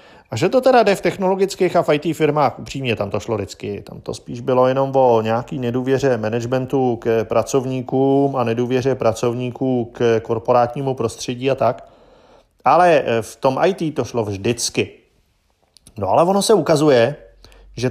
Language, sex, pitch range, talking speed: Czech, male, 115-155 Hz, 160 wpm